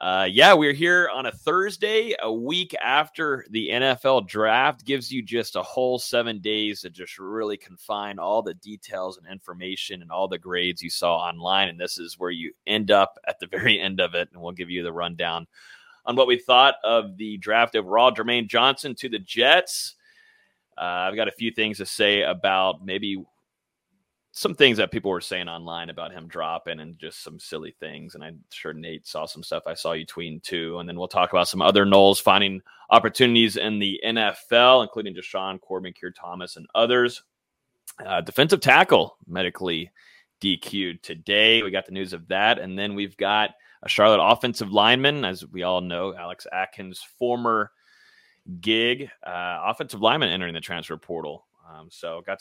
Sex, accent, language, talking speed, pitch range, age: male, American, English, 185 wpm, 90-120 Hz, 30-49